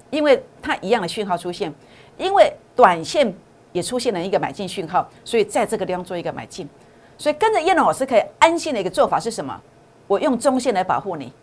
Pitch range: 190-275 Hz